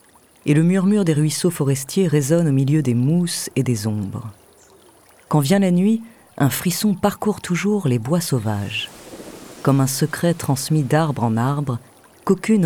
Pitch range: 130-180 Hz